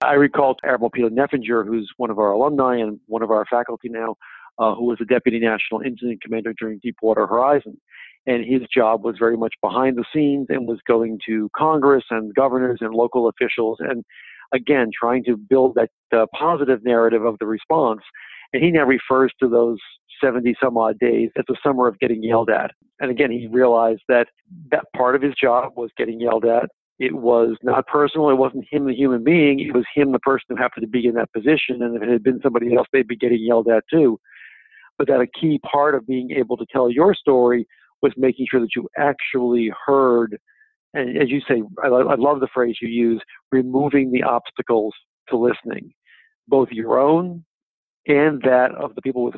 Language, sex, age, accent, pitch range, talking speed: English, male, 50-69, American, 115-135 Hz, 205 wpm